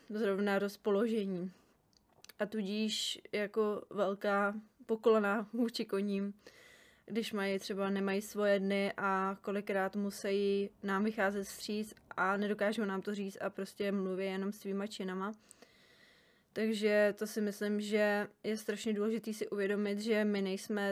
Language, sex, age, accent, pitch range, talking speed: Czech, female, 20-39, native, 200-220 Hz, 130 wpm